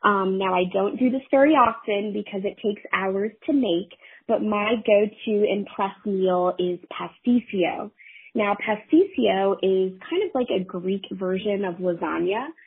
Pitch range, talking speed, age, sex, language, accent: 185-230 Hz, 150 wpm, 20-39, female, English, American